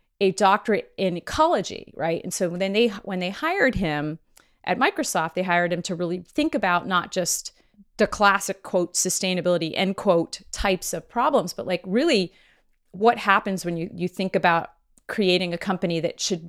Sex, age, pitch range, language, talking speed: female, 30-49, 165-200 Hz, English, 175 wpm